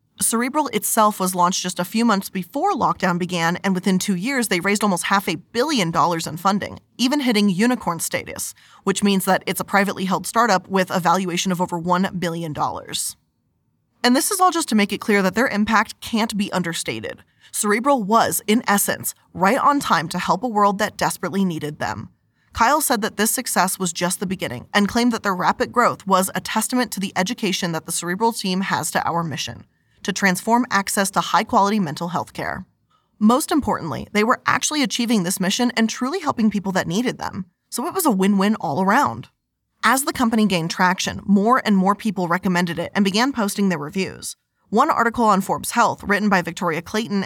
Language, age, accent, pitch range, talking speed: English, 20-39, American, 180-230 Hz, 200 wpm